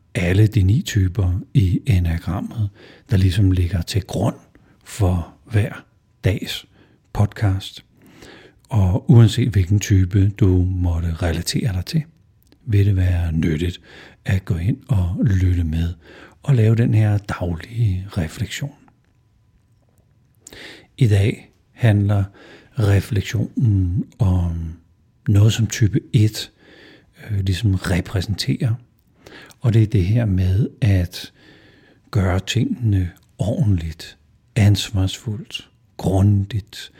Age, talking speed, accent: 60-79, 100 wpm, native